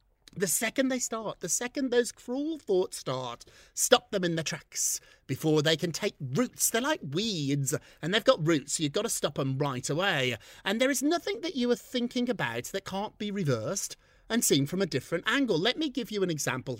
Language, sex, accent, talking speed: English, male, British, 210 wpm